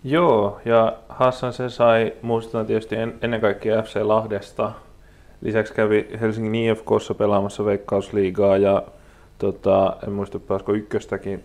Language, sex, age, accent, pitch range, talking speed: Finnish, male, 20-39, native, 95-115 Hz, 125 wpm